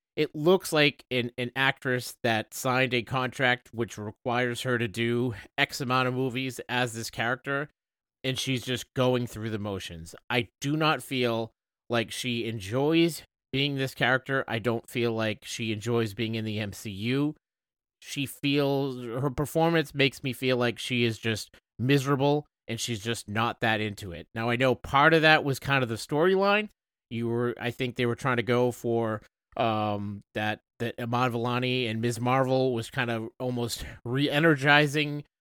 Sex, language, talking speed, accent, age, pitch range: male, English, 175 wpm, American, 30-49, 115-140 Hz